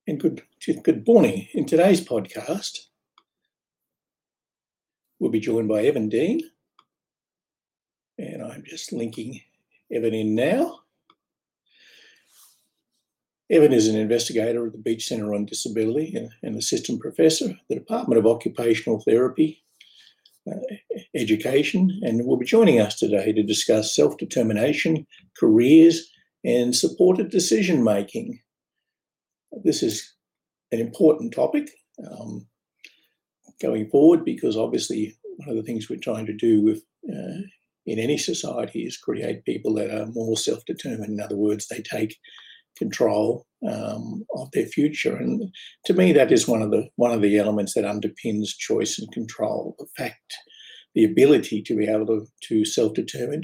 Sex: male